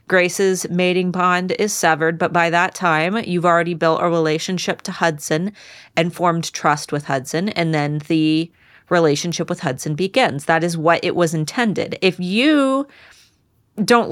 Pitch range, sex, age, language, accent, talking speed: 170-215 Hz, female, 30-49, English, American, 155 wpm